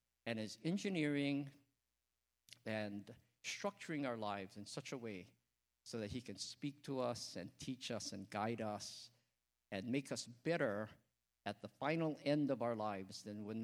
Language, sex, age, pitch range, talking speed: English, male, 50-69, 100-135 Hz, 165 wpm